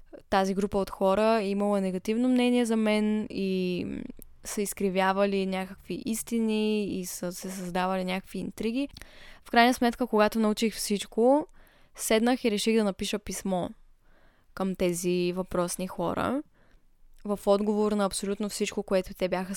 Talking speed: 135 wpm